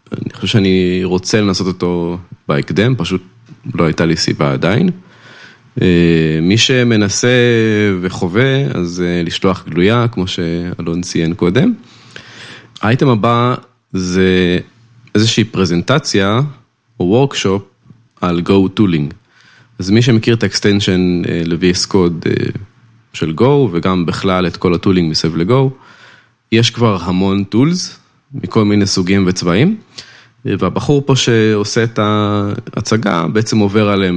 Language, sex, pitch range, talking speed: Hebrew, male, 90-120 Hz, 110 wpm